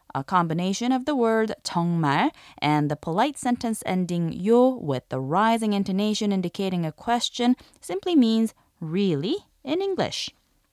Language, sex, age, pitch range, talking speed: English, female, 20-39, 170-255 Hz, 135 wpm